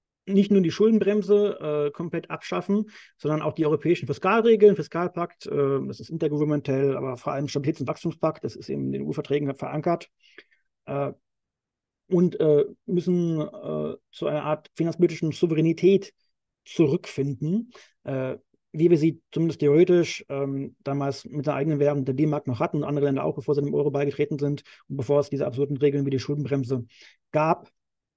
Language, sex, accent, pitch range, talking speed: German, male, German, 135-165 Hz, 165 wpm